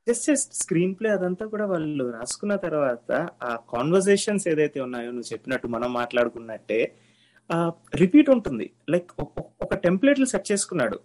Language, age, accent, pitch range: Telugu, 30-49, native, 135-205 Hz